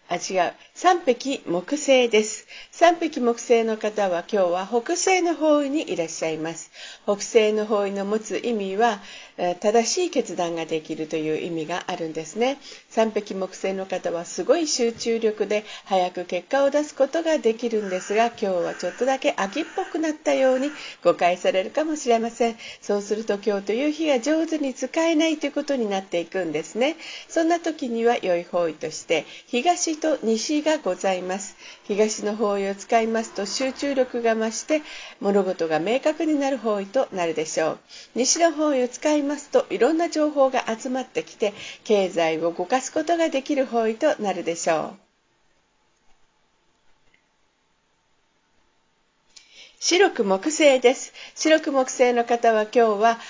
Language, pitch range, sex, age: Japanese, 190-285 Hz, female, 50-69